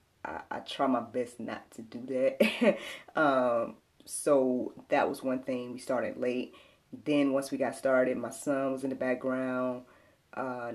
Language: English